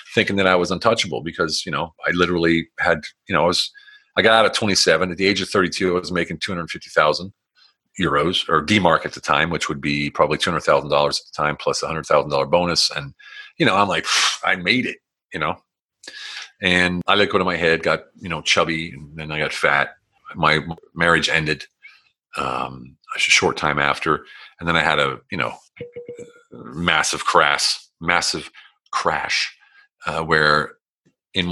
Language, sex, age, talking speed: English, male, 40-59, 185 wpm